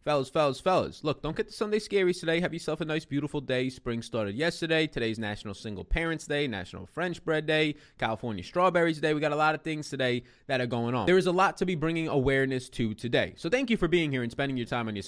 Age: 20-39